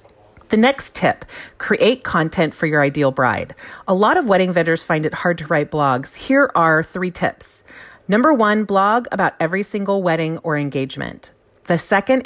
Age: 40-59